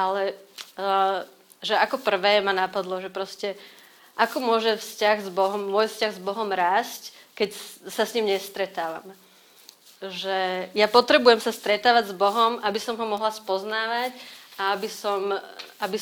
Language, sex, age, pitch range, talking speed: Slovak, female, 30-49, 190-220 Hz, 145 wpm